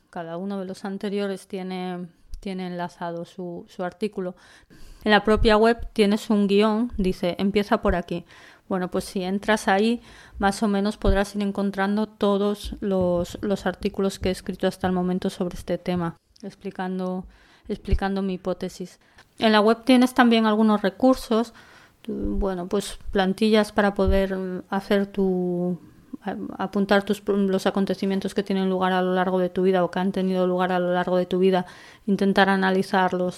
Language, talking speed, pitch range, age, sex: Spanish, 160 wpm, 185-210 Hz, 20-39, female